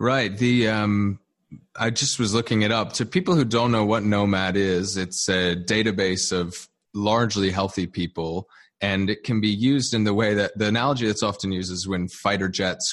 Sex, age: male, 30-49